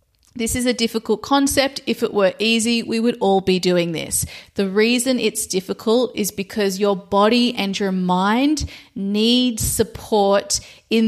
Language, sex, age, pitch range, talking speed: English, female, 30-49, 185-230 Hz, 155 wpm